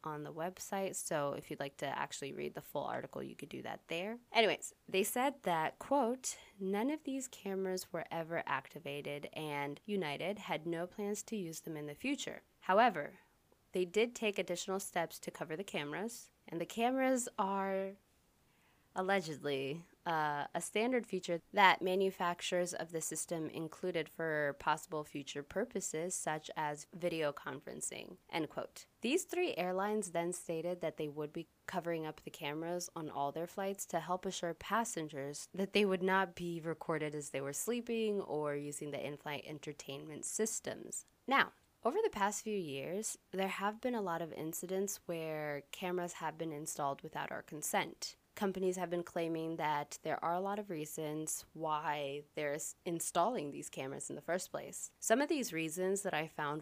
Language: English